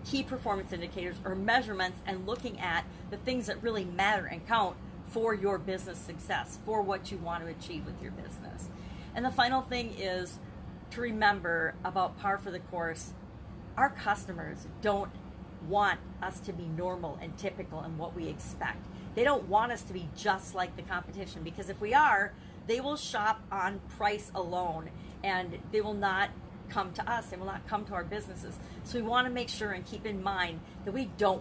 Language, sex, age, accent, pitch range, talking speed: English, female, 40-59, American, 175-220 Hz, 195 wpm